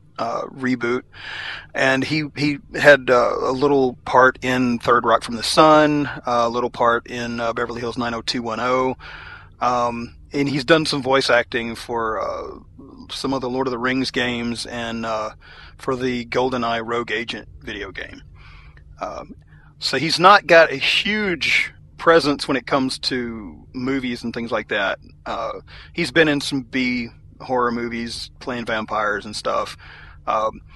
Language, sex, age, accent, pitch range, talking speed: English, male, 40-59, American, 115-135 Hz, 155 wpm